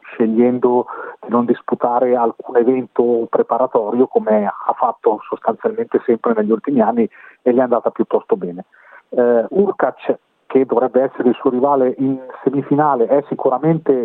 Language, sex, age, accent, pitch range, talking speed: Italian, male, 40-59, native, 120-150 Hz, 140 wpm